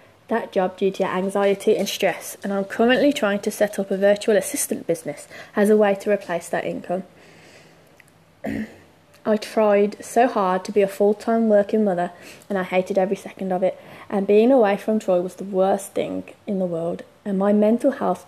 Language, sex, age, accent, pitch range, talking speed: English, female, 20-39, British, 190-225 Hz, 190 wpm